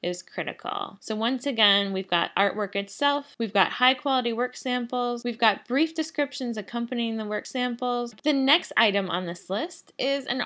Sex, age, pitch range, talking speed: female, 10-29, 190-255 Hz, 170 wpm